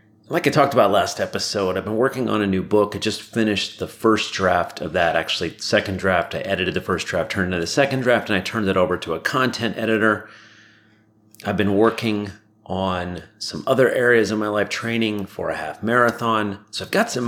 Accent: American